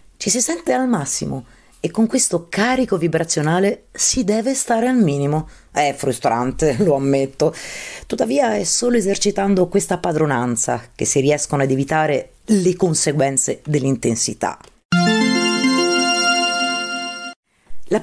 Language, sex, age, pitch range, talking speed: Italian, female, 30-49, 150-230 Hz, 115 wpm